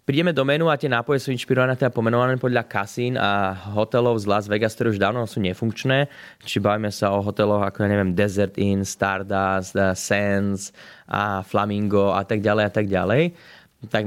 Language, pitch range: Slovak, 100-120 Hz